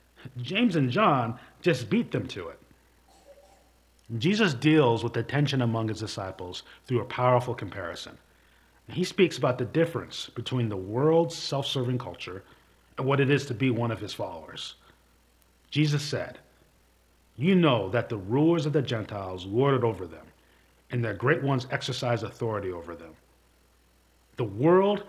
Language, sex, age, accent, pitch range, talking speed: English, male, 40-59, American, 100-145 Hz, 150 wpm